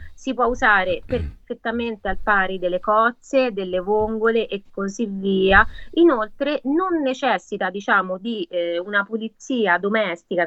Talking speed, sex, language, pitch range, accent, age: 125 wpm, female, Italian, 190-235 Hz, native, 30-49